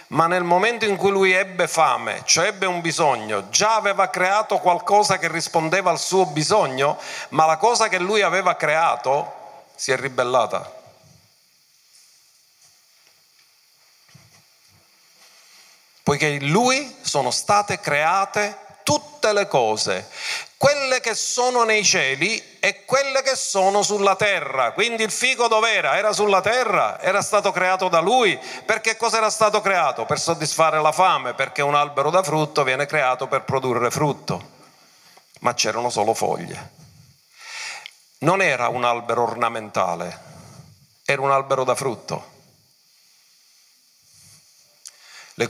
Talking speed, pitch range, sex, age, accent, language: 130 wpm, 145-220 Hz, male, 40-59, native, Italian